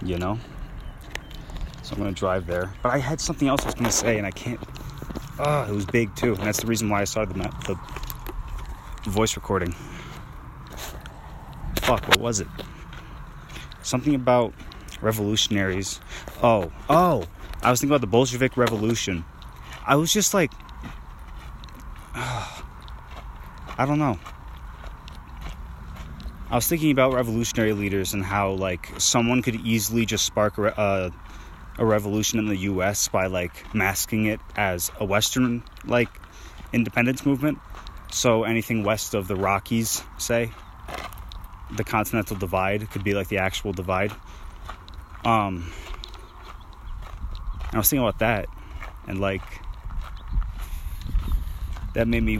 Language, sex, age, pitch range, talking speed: English, male, 20-39, 80-115 Hz, 135 wpm